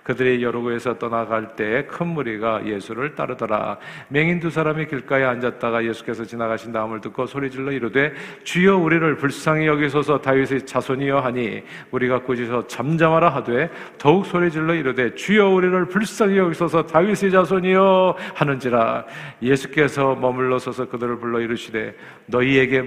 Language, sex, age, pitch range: Korean, male, 50-69, 110-140 Hz